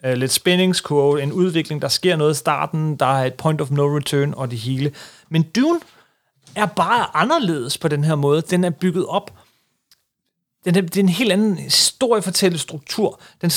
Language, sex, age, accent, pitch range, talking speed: Danish, male, 30-49, native, 150-200 Hz, 180 wpm